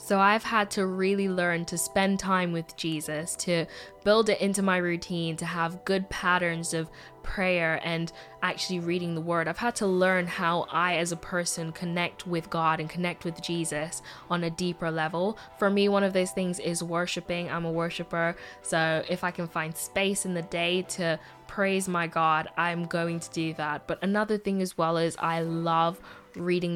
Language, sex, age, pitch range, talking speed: English, female, 10-29, 165-185 Hz, 195 wpm